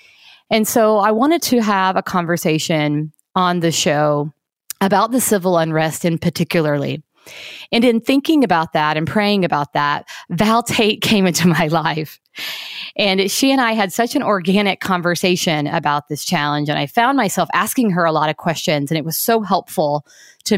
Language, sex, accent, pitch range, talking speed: English, female, American, 160-210 Hz, 175 wpm